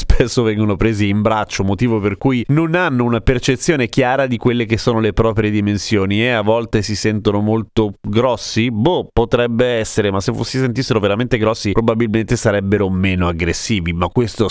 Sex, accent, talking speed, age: male, native, 175 wpm, 30-49